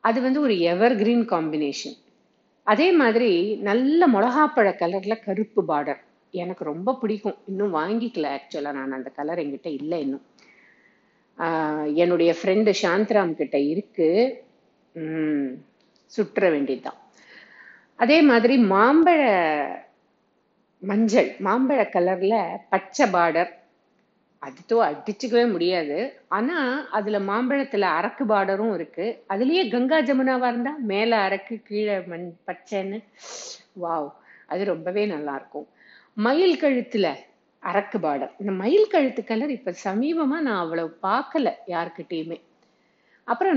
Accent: native